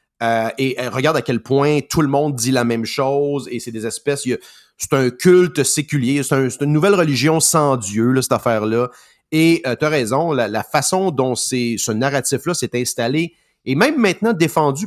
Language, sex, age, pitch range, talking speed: French, male, 30-49, 115-145 Hz, 210 wpm